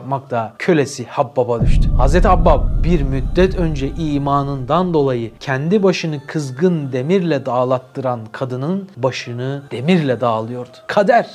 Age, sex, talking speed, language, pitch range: 40-59, male, 110 wpm, Turkish, 120-150 Hz